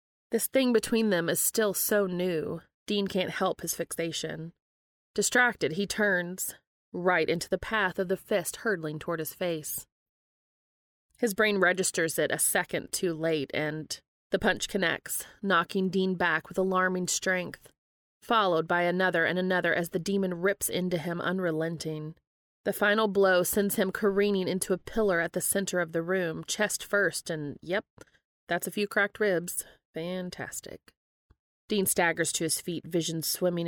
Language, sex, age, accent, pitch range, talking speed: English, female, 30-49, American, 165-200 Hz, 160 wpm